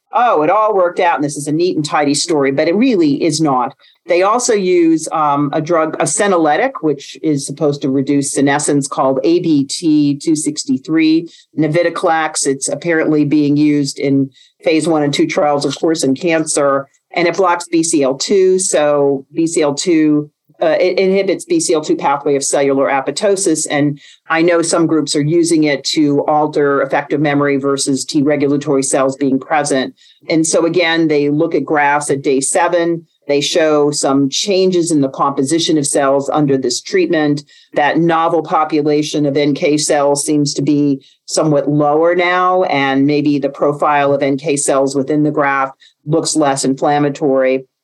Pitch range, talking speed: 140-170 Hz, 160 wpm